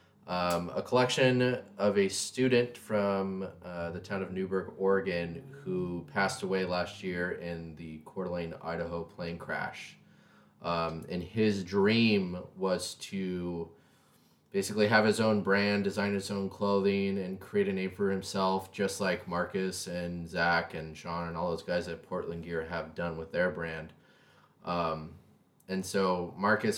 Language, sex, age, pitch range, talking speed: English, male, 20-39, 85-105 Hz, 155 wpm